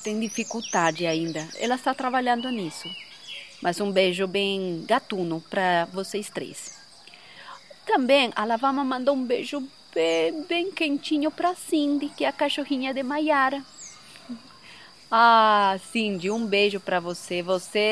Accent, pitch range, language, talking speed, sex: Brazilian, 200-280 Hz, Portuguese, 130 wpm, female